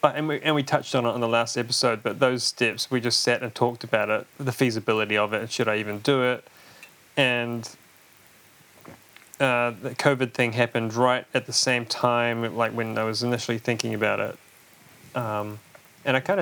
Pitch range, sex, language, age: 115-130 Hz, male, English, 30-49